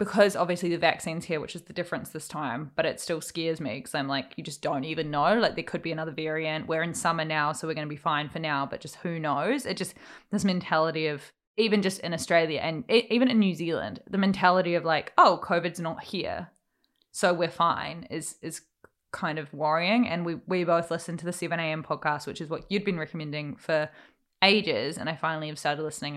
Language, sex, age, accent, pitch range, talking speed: English, female, 20-39, Australian, 160-185 Hz, 230 wpm